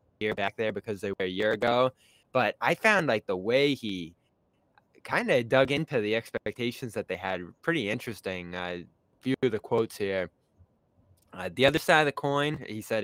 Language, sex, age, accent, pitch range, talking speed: English, male, 10-29, American, 100-120 Hz, 200 wpm